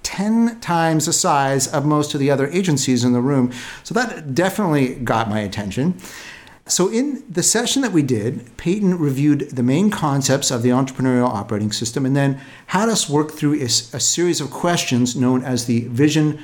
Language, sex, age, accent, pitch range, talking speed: English, male, 50-69, American, 125-160 Hz, 185 wpm